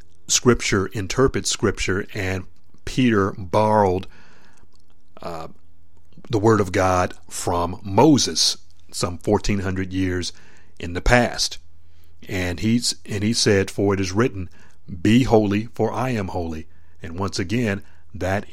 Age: 40-59